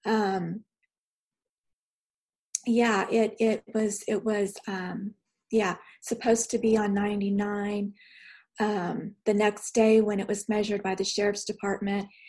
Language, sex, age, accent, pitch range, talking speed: English, female, 30-49, American, 200-220 Hz, 125 wpm